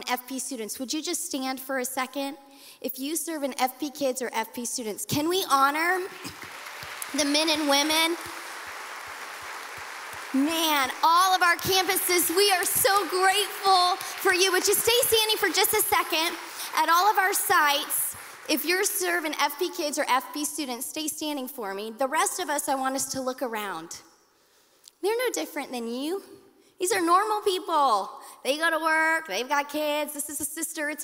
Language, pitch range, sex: English, 265-360 Hz, female